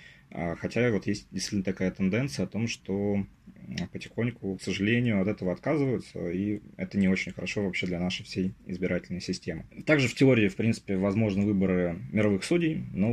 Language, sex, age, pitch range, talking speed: Russian, male, 20-39, 90-110 Hz, 165 wpm